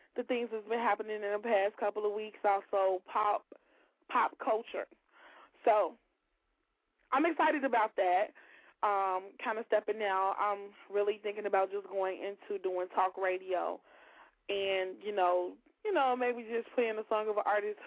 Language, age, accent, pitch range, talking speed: English, 20-39, American, 195-275 Hz, 160 wpm